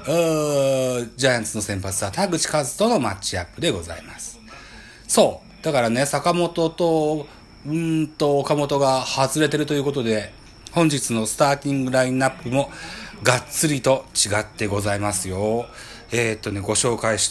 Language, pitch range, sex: Japanese, 110-145 Hz, male